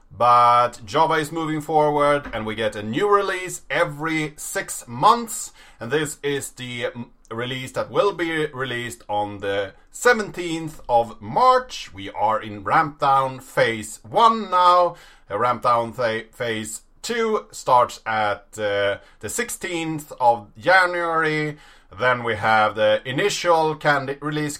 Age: 30-49